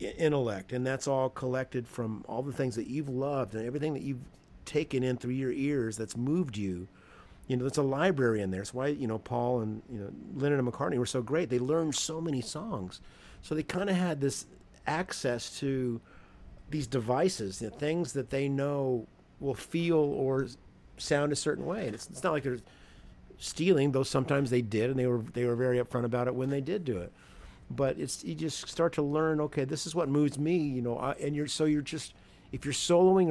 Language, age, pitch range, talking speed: English, 50-69, 120-150 Hz, 220 wpm